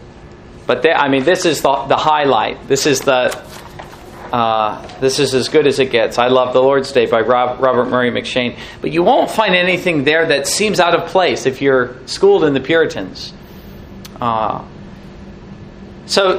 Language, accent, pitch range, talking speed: English, American, 140-185 Hz, 180 wpm